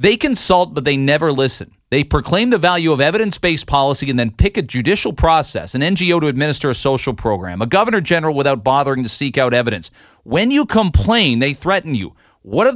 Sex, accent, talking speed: male, American, 200 wpm